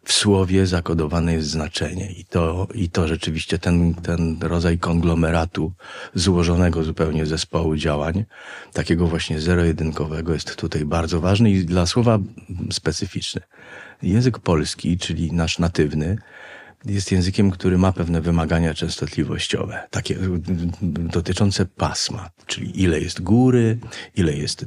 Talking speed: 120 wpm